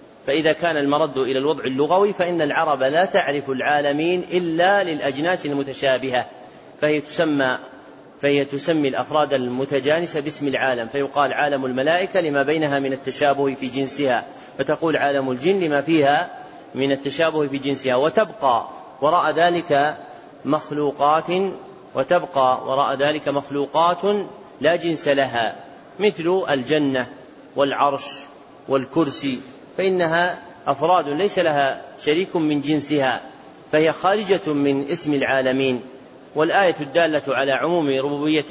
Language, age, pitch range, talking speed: Arabic, 30-49, 135-160 Hz, 110 wpm